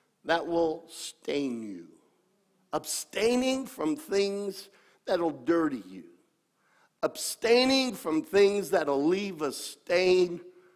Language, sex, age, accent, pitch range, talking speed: English, male, 50-69, American, 170-250 Hz, 105 wpm